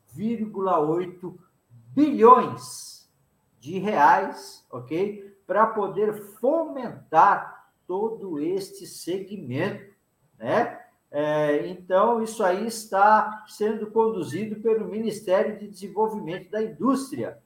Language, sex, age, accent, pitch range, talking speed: Portuguese, male, 50-69, Brazilian, 150-215 Hz, 85 wpm